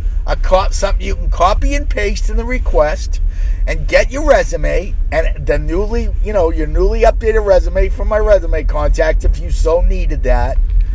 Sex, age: male, 50-69